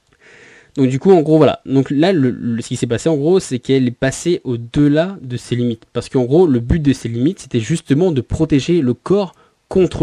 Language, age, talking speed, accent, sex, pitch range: French, 20-39, 235 wpm, French, male, 120-150 Hz